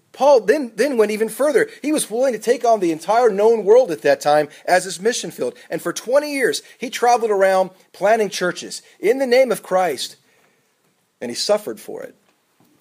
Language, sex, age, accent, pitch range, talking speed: English, male, 40-59, American, 155-215 Hz, 195 wpm